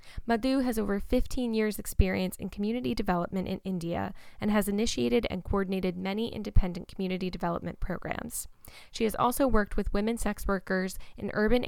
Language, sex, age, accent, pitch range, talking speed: English, female, 10-29, American, 185-220 Hz, 160 wpm